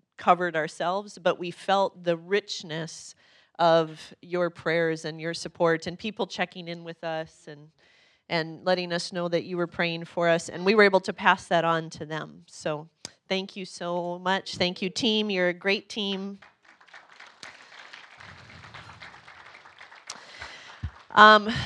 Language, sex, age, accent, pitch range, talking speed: English, female, 30-49, American, 175-205 Hz, 145 wpm